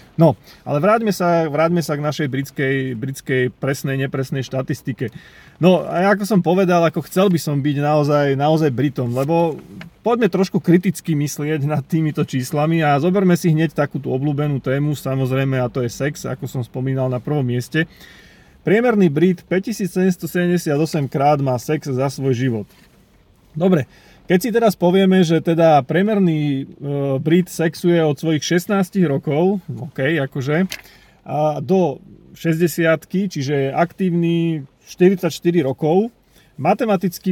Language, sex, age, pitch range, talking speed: Slovak, male, 30-49, 145-175 Hz, 140 wpm